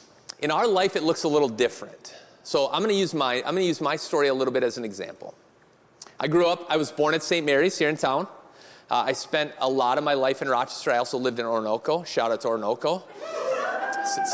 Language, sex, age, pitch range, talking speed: English, male, 30-49, 140-200 Hz, 245 wpm